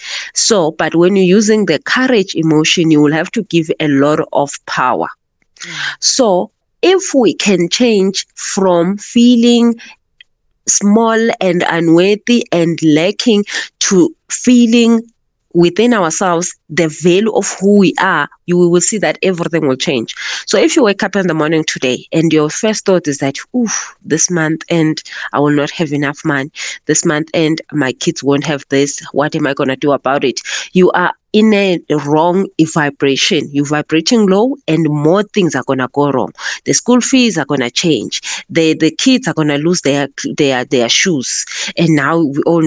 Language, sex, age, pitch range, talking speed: English, female, 30-49, 150-200 Hz, 175 wpm